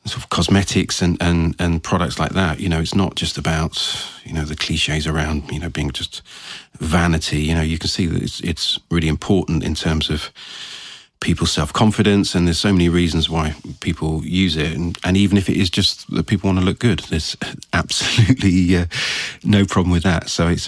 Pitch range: 80-95 Hz